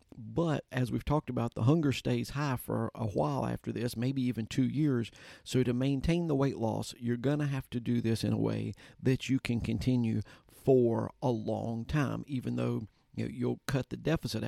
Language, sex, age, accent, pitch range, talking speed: English, male, 50-69, American, 115-135 Hz, 205 wpm